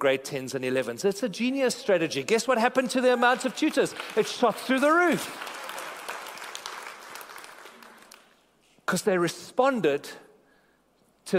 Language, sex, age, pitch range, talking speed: English, male, 40-59, 145-195 Hz, 130 wpm